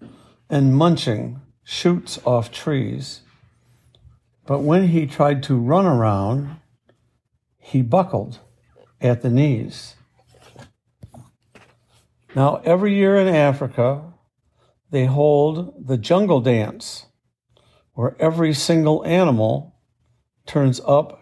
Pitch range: 120-155 Hz